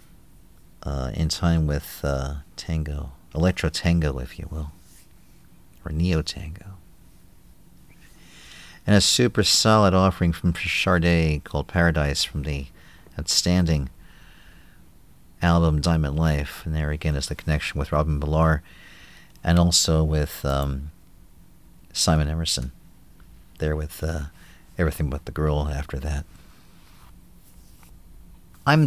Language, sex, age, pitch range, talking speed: English, male, 50-69, 75-95 Hz, 110 wpm